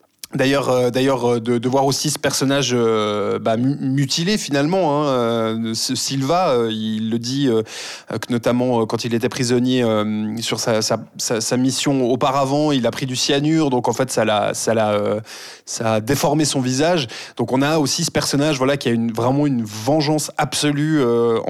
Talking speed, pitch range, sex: 175 wpm, 120-145 Hz, male